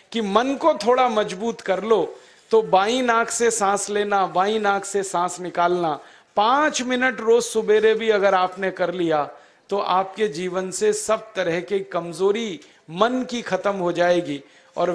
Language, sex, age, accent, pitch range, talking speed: Hindi, male, 40-59, native, 185-240 Hz, 165 wpm